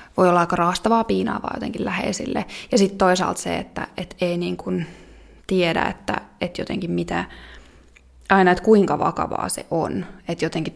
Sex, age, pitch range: female, 20-39, 155-190 Hz